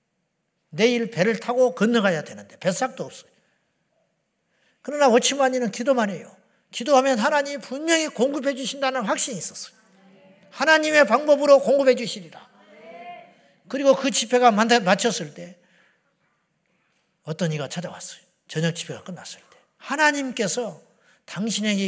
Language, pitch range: Korean, 175-250 Hz